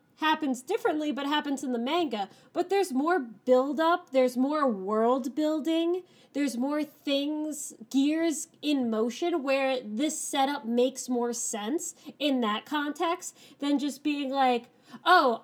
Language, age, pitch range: English, 20-39, 240-320 Hz